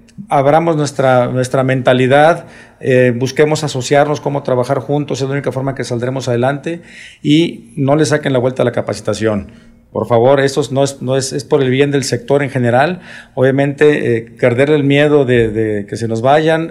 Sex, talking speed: male, 185 wpm